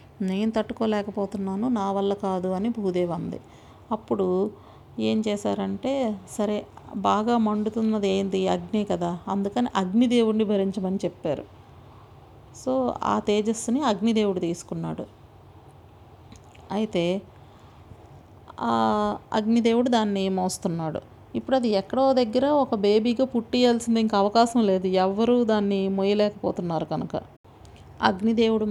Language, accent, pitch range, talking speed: Telugu, native, 190-230 Hz, 95 wpm